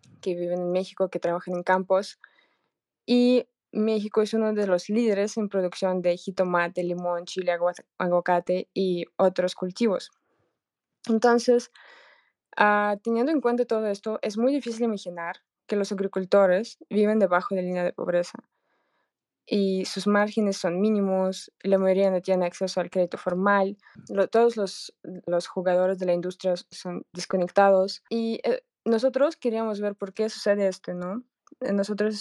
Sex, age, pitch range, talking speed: female, 20-39, 185-215 Hz, 150 wpm